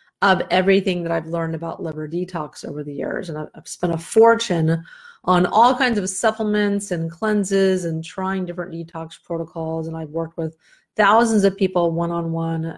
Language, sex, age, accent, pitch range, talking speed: English, female, 30-49, American, 165-200 Hz, 170 wpm